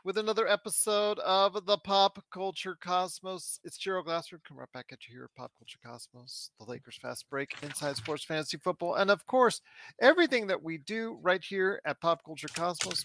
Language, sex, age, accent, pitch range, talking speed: English, male, 40-59, American, 160-220 Hz, 195 wpm